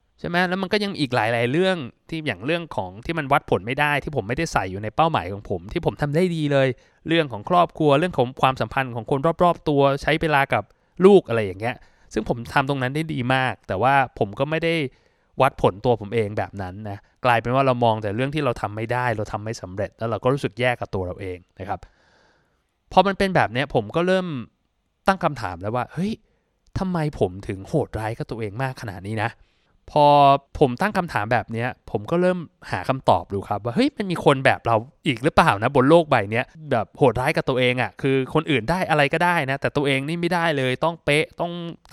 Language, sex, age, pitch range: Thai, male, 20-39, 115-155 Hz